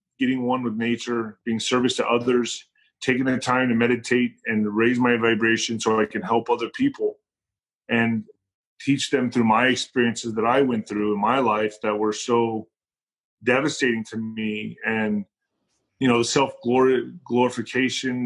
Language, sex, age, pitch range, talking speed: English, male, 30-49, 115-135 Hz, 160 wpm